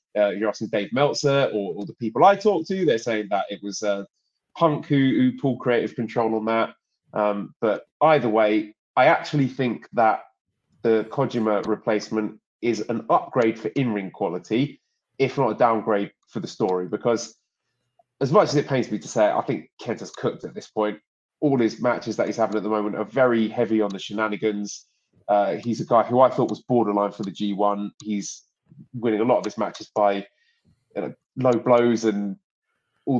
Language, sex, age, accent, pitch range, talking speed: English, male, 20-39, British, 105-140 Hz, 190 wpm